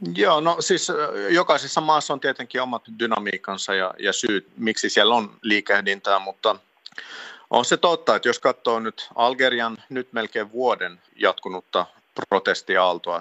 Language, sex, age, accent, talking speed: Finnish, male, 50-69, native, 135 wpm